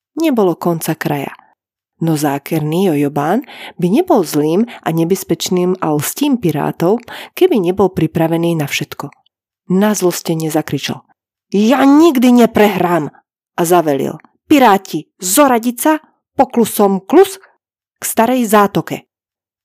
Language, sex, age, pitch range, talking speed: Slovak, female, 30-49, 165-265 Hz, 105 wpm